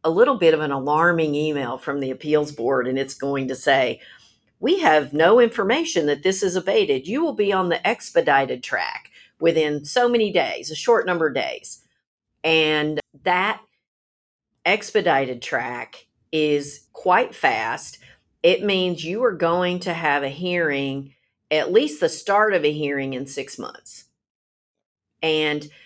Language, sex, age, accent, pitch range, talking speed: English, female, 50-69, American, 145-185 Hz, 155 wpm